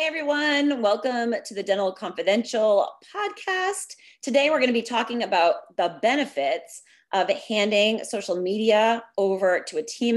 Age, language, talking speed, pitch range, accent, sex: 30-49, English, 140 wpm, 200-270 Hz, American, female